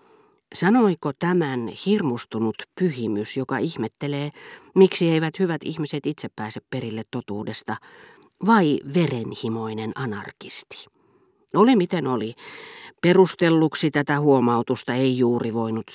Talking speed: 100 wpm